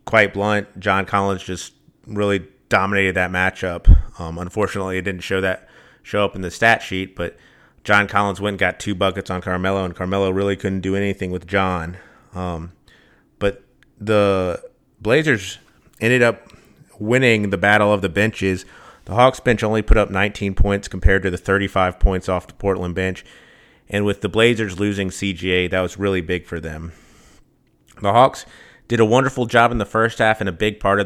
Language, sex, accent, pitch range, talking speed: English, male, American, 95-105 Hz, 185 wpm